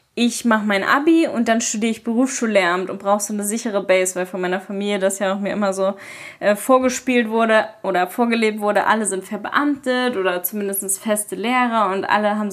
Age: 10-29